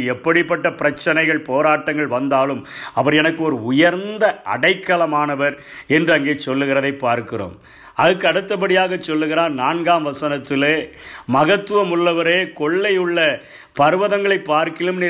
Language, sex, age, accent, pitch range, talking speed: Tamil, male, 50-69, native, 150-190 Hz, 75 wpm